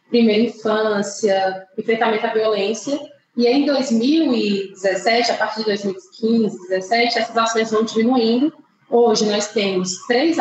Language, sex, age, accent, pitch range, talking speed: Portuguese, female, 20-39, Brazilian, 200-240 Hz, 120 wpm